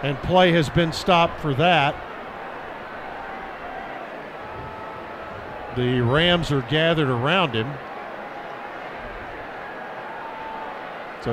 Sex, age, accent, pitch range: male, 50-69, American, 150-190 Hz